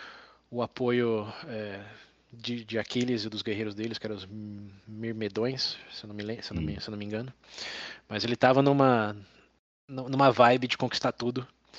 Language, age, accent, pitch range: Portuguese, 20-39, Brazilian, 105-125 Hz